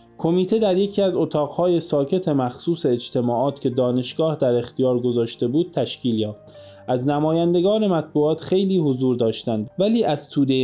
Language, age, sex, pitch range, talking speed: Persian, 20-39, male, 125-165 Hz, 140 wpm